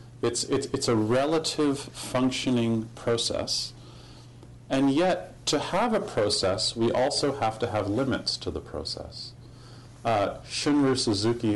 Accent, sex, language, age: American, male, English, 40-59